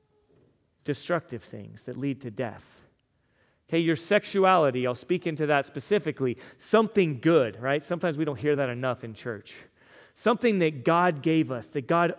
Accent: American